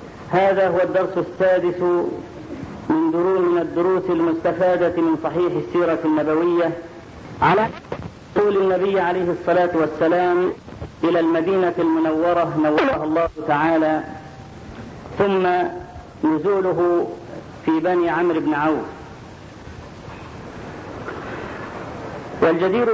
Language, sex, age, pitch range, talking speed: Arabic, female, 50-69, 165-190 Hz, 85 wpm